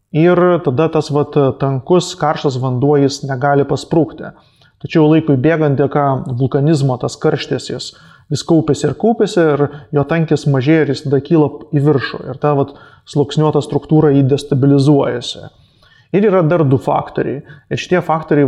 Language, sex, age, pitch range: English, male, 20-39, 140-155 Hz